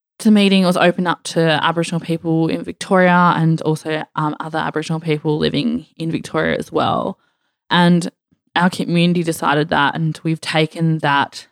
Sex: female